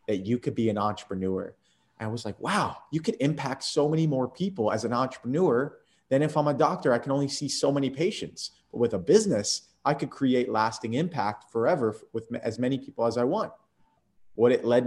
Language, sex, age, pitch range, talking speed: English, male, 30-49, 105-130 Hz, 215 wpm